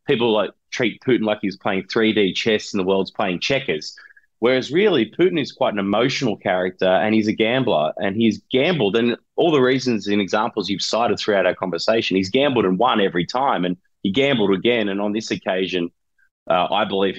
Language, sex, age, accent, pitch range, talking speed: English, male, 30-49, Australian, 90-110 Hz, 200 wpm